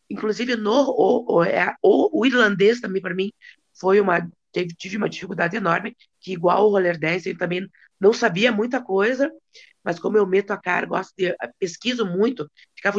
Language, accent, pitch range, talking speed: Portuguese, Brazilian, 175-215 Hz, 175 wpm